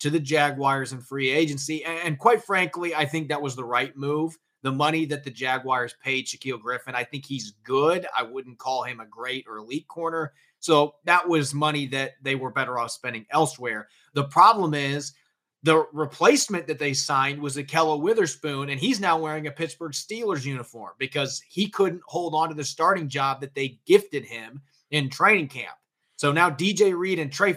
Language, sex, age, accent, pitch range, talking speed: English, male, 30-49, American, 130-155 Hz, 195 wpm